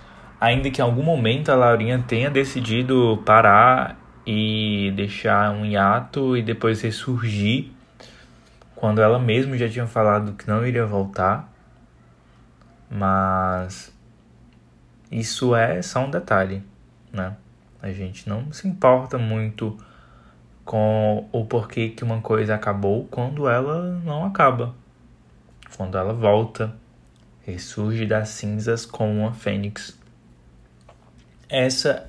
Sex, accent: male, Brazilian